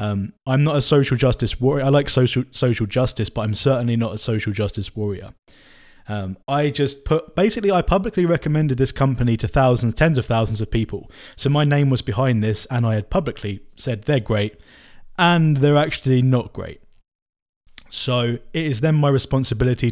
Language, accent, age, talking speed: English, British, 20-39, 185 wpm